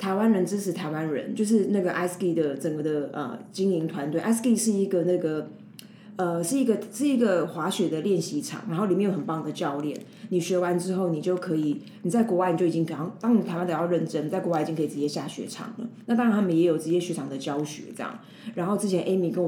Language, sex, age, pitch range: Chinese, female, 20-39, 165-210 Hz